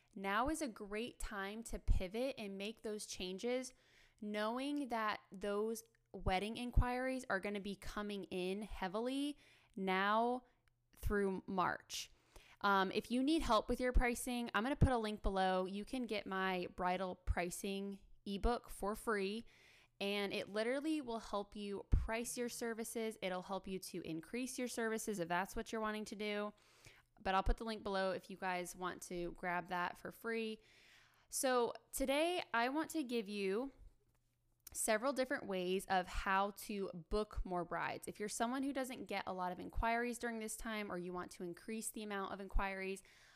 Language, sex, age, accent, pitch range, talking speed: English, female, 10-29, American, 190-235 Hz, 175 wpm